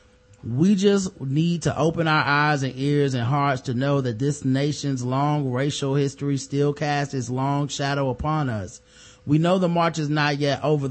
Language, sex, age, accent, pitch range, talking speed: English, male, 30-49, American, 125-150 Hz, 185 wpm